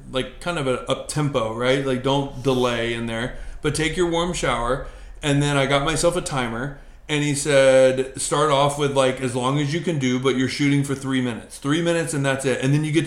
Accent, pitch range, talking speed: American, 130-145 Hz, 235 wpm